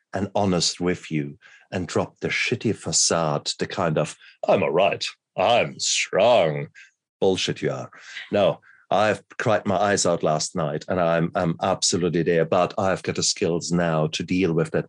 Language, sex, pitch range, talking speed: English, male, 80-95 Hz, 175 wpm